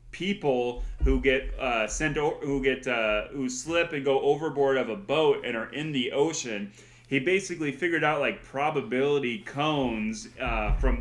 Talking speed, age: 170 wpm, 30-49